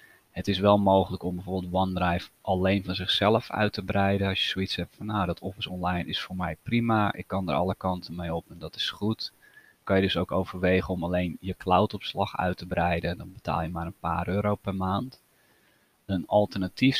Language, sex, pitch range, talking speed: Dutch, male, 90-105 Hz, 215 wpm